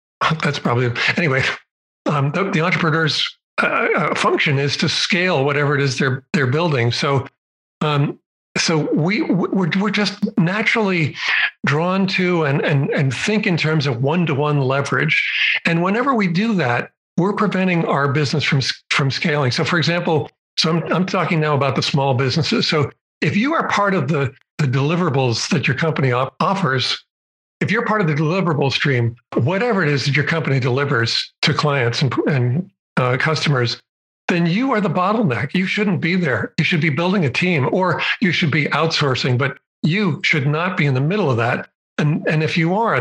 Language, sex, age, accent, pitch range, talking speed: English, male, 60-79, American, 140-185 Hz, 185 wpm